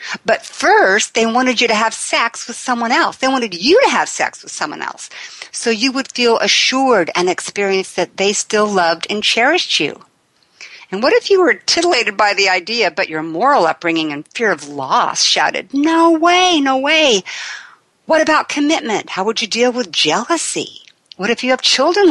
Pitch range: 190-275 Hz